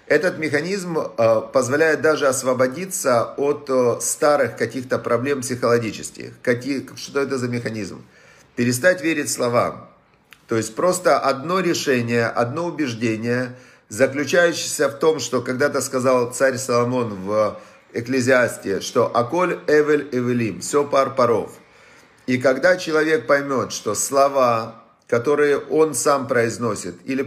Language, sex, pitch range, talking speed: Russian, male, 120-150 Hz, 115 wpm